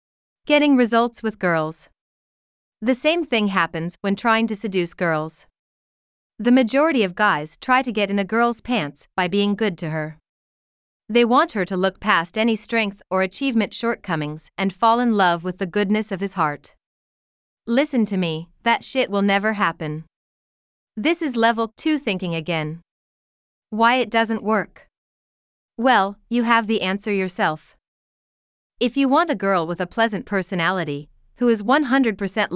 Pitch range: 180-235 Hz